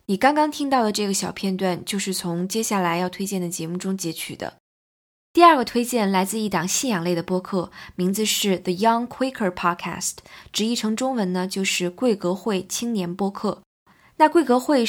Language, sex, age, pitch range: Chinese, female, 20-39, 180-235 Hz